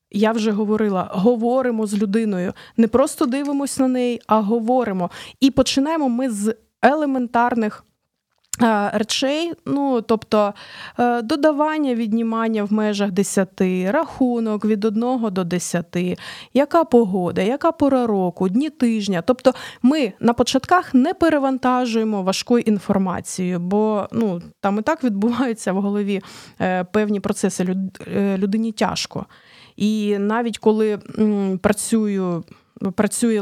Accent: native